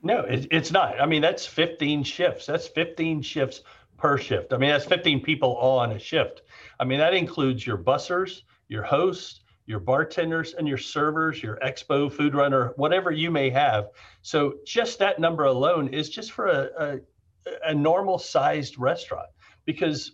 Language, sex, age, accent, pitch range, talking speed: English, male, 50-69, American, 125-165 Hz, 170 wpm